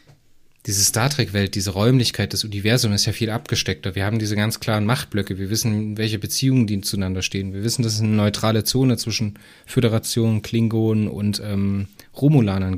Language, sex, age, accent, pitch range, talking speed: German, male, 20-39, German, 100-125 Hz, 170 wpm